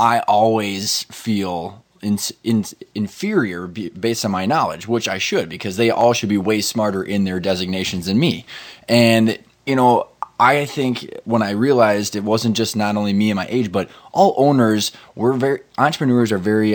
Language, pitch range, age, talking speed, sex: English, 100-125 Hz, 20-39, 180 wpm, male